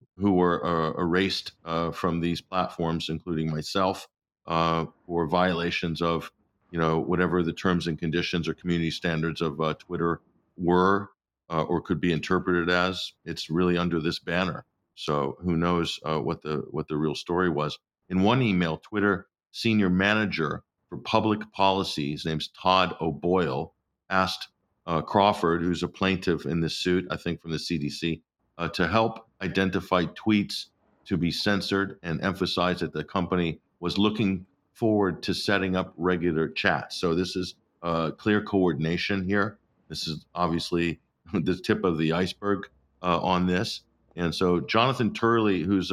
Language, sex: English, male